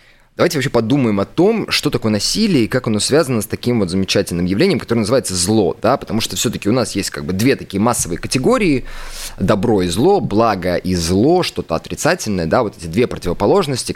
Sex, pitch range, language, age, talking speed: male, 90-115 Hz, Russian, 20-39, 200 wpm